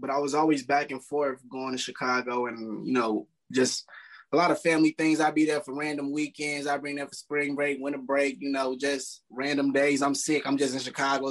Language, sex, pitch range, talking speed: English, male, 130-155 Hz, 235 wpm